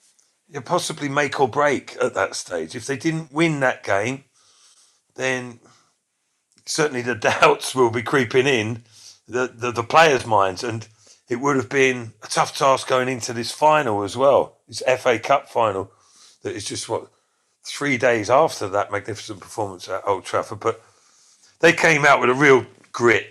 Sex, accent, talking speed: male, British, 165 wpm